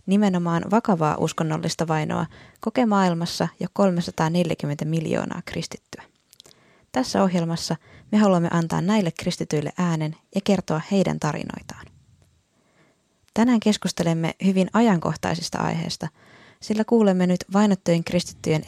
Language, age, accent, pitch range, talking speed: Finnish, 20-39, native, 165-195 Hz, 105 wpm